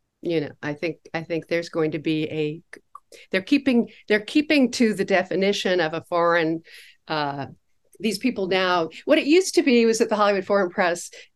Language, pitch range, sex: English, 170-220 Hz, female